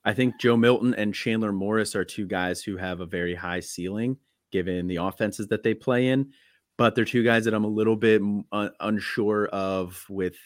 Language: English